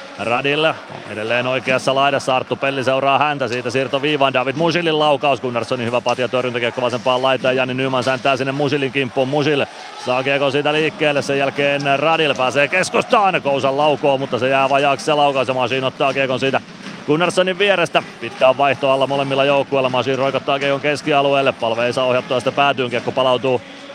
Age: 30-49